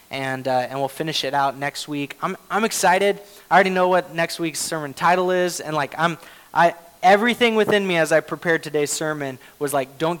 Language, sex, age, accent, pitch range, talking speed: English, male, 20-39, American, 140-180 Hz, 210 wpm